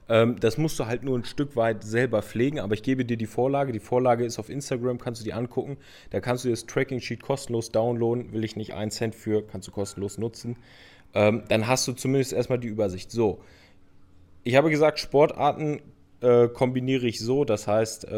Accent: German